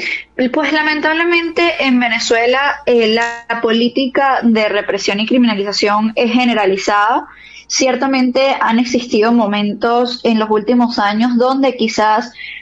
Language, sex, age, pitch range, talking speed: Spanish, female, 10-29, 220-260 Hz, 115 wpm